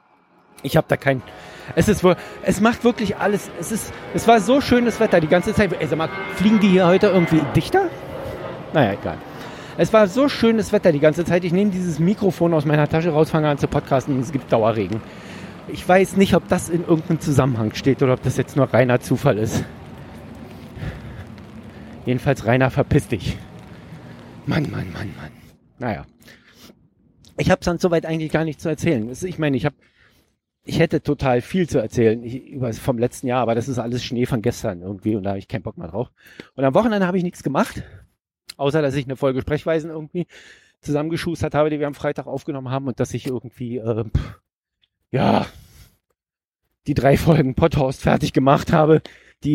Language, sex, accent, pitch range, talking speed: German, male, German, 125-170 Hz, 190 wpm